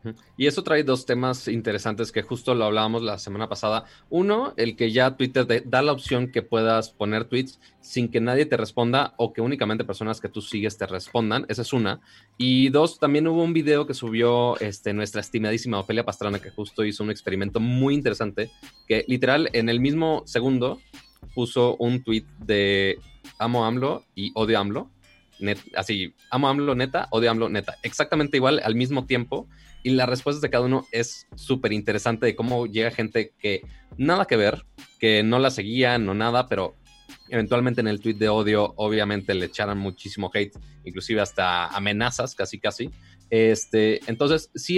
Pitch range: 105-130 Hz